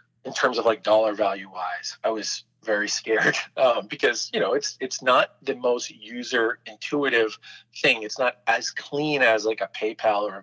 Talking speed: 190 wpm